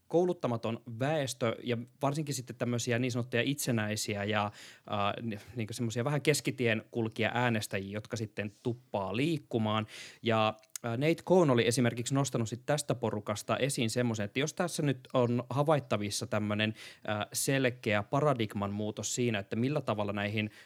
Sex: male